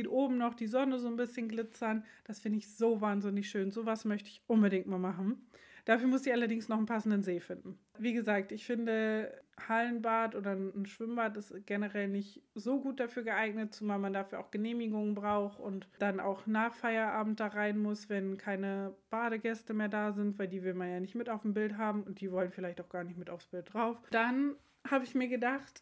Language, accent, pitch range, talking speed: German, German, 205-235 Hz, 215 wpm